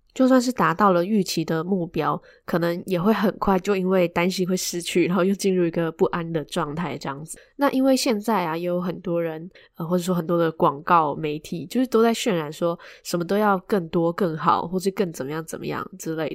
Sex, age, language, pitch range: female, 10-29, Chinese, 165-200 Hz